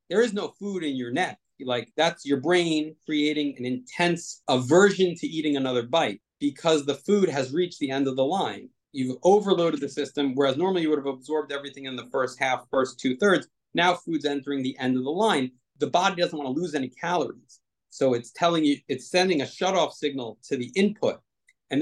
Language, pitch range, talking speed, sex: English, 130-170 Hz, 210 wpm, male